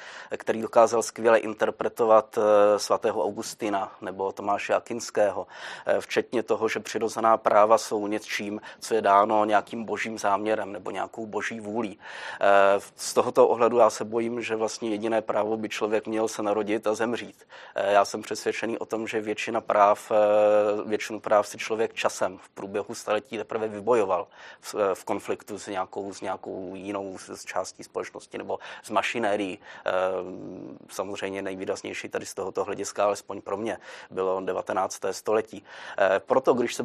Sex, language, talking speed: male, Czech, 145 wpm